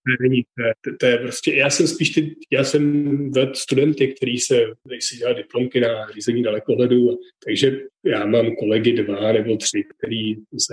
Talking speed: 170 wpm